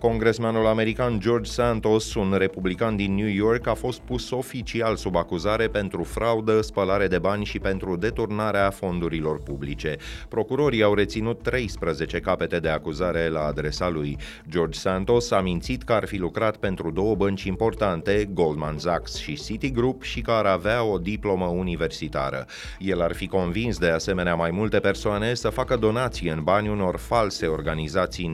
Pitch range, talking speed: 85-110 Hz, 160 wpm